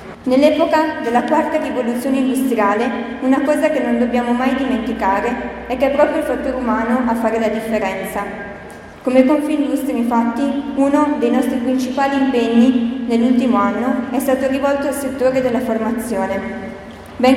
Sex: female